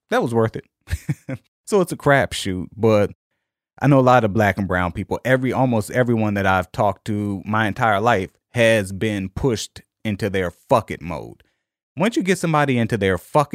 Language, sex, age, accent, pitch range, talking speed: English, male, 30-49, American, 100-135 Hz, 195 wpm